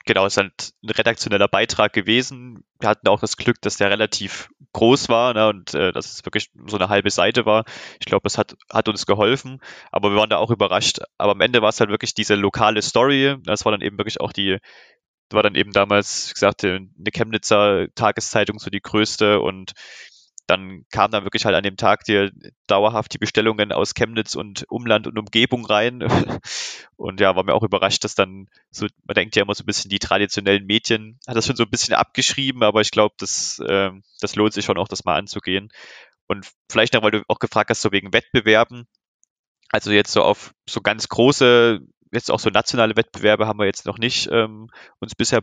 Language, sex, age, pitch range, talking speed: German, male, 20-39, 100-115 Hz, 215 wpm